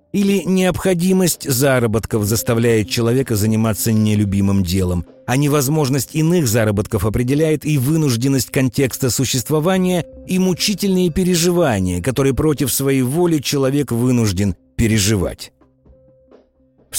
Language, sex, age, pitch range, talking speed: Russian, male, 50-69, 105-160 Hz, 100 wpm